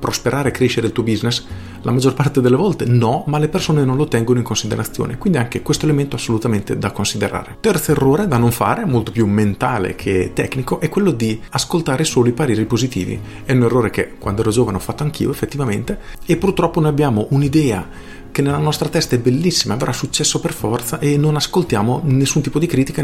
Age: 40-59